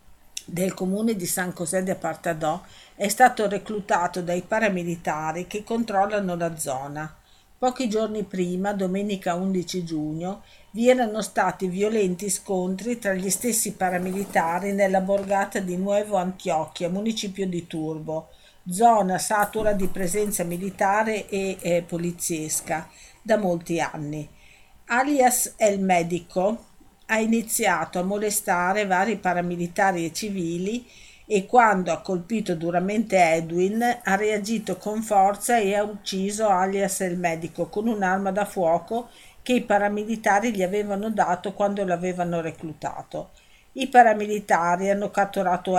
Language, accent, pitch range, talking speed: Italian, native, 175-210 Hz, 125 wpm